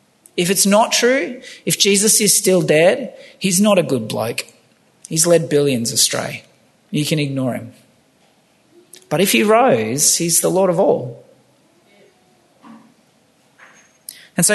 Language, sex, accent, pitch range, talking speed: English, male, Australian, 135-185 Hz, 135 wpm